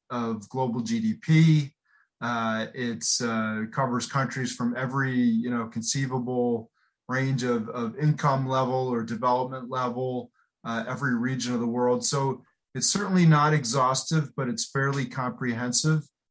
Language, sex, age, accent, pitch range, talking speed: English, male, 30-49, American, 120-140 Hz, 120 wpm